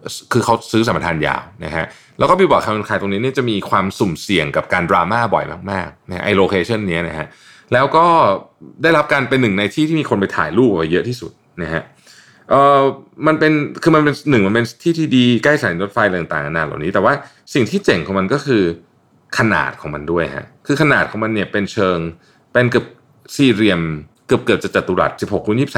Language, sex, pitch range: Thai, male, 100-145 Hz